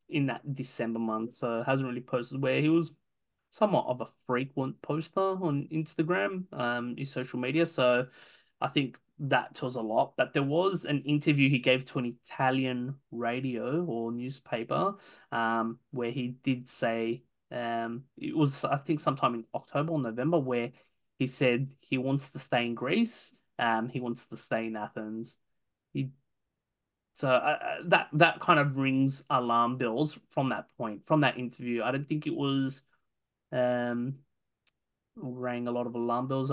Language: English